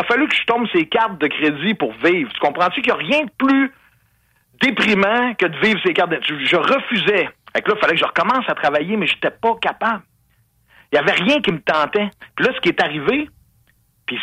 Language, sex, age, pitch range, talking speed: French, male, 50-69, 155-235 Hz, 245 wpm